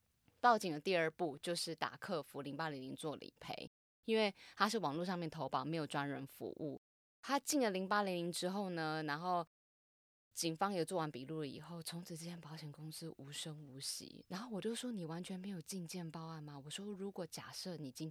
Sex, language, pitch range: female, Chinese, 150-195 Hz